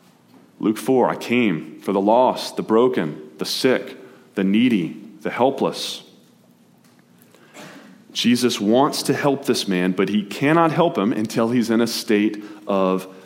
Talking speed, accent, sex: 145 wpm, American, male